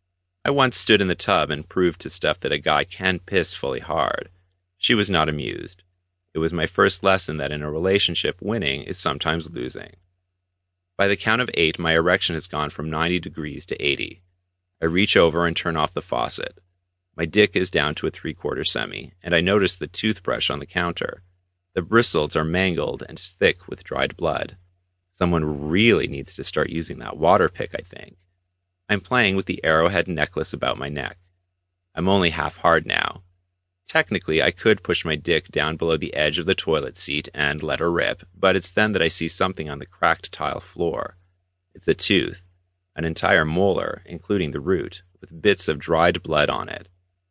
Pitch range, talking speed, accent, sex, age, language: 85-95 Hz, 195 wpm, American, male, 30-49, English